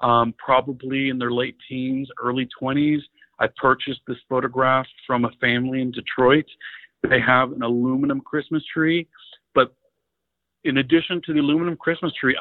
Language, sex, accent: English, male, American